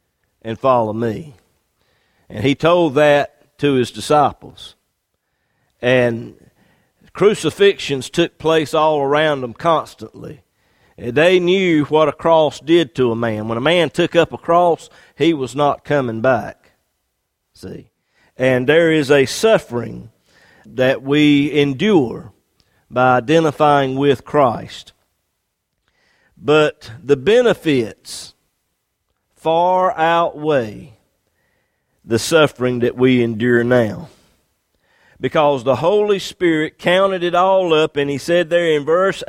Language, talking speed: English, 120 wpm